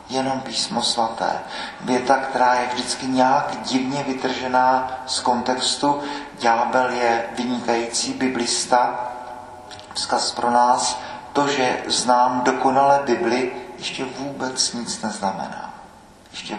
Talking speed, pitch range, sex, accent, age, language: 105 wpm, 125-165 Hz, male, native, 40-59, Czech